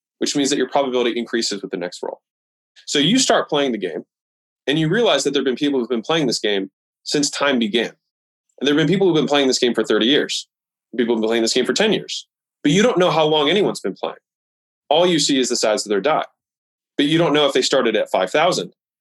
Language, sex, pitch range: English, male, 120-160 Hz